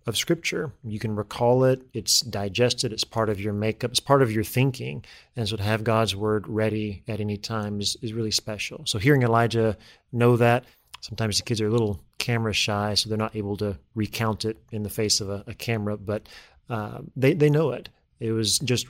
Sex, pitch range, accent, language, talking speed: male, 105-125 Hz, American, English, 215 wpm